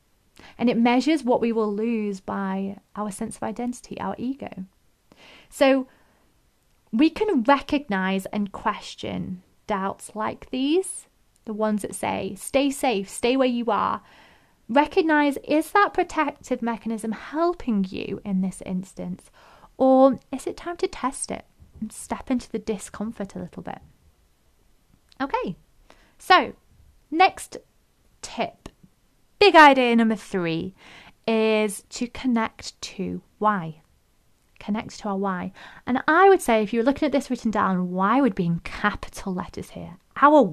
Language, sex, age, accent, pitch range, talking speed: English, female, 30-49, British, 195-265 Hz, 140 wpm